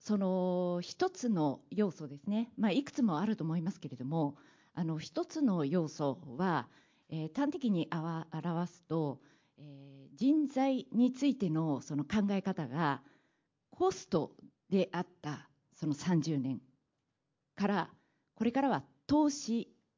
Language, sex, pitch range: Japanese, female, 145-205 Hz